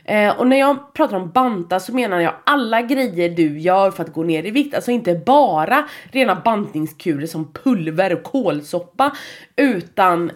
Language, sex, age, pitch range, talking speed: Swedish, female, 20-39, 170-235 Hz, 175 wpm